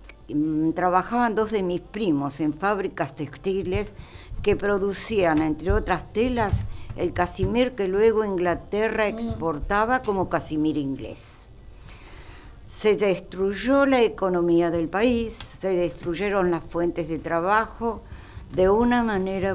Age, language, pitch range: 60-79, Spanish, 155-205 Hz